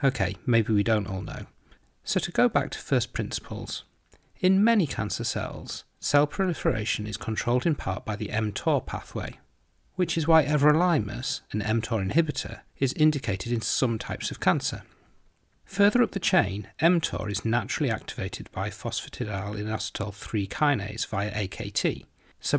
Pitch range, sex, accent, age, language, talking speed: 105-145 Hz, male, British, 40-59, English, 145 wpm